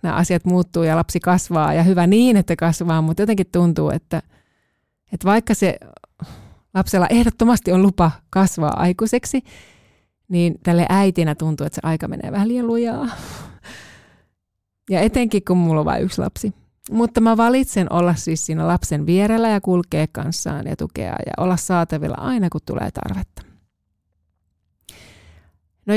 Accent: native